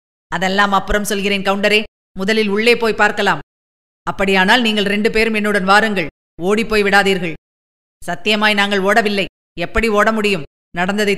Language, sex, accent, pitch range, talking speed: Tamil, female, native, 185-245 Hz, 125 wpm